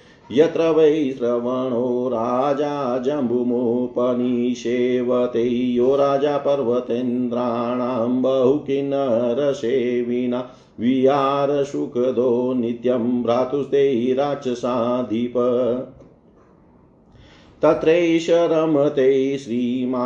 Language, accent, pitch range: Hindi, native, 125-140 Hz